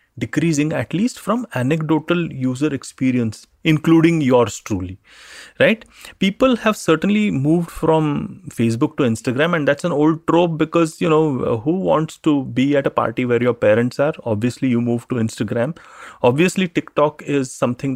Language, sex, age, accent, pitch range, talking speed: English, male, 30-49, Indian, 125-165 Hz, 155 wpm